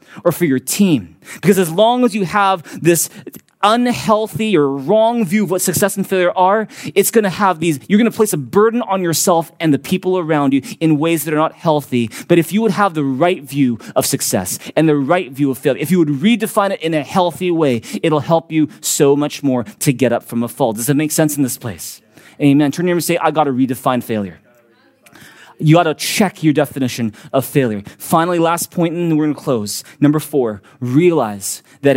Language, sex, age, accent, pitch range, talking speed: English, male, 20-39, American, 120-175 Hz, 225 wpm